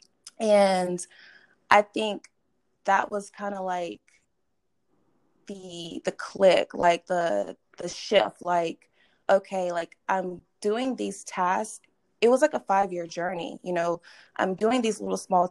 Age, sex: 20-39, female